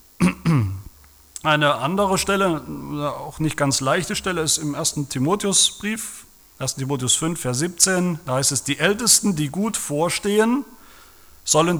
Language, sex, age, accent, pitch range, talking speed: German, male, 40-59, German, 115-165 Hz, 130 wpm